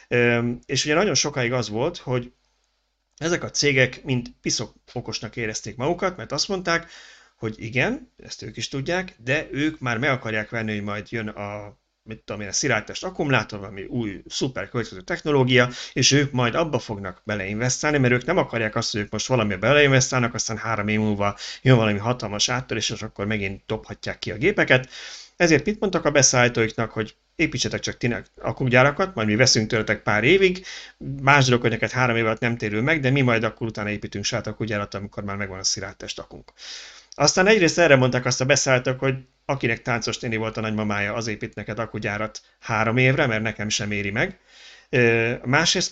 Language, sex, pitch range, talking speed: Hungarian, male, 110-135 Hz, 185 wpm